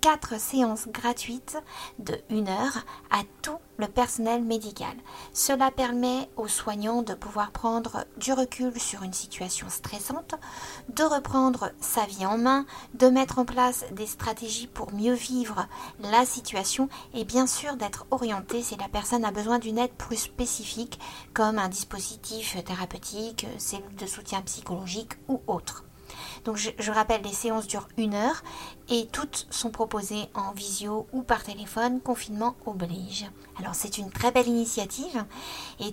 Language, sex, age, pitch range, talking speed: French, female, 50-69, 210-250 Hz, 155 wpm